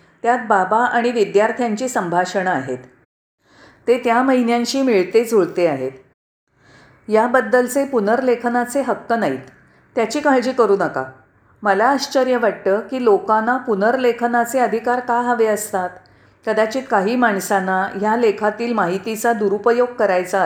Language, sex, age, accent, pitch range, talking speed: Marathi, female, 40-59, native, 195-245 Hz, 110 wpm